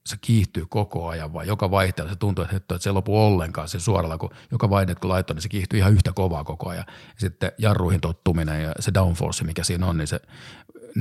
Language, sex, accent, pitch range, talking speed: Finnish, male, native, 85-105 Hz, 215 wpm